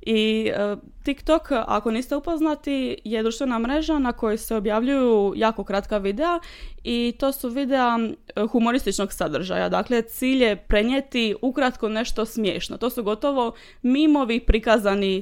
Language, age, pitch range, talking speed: Croatian, 20-39, 205-260 Hz, 130 wpm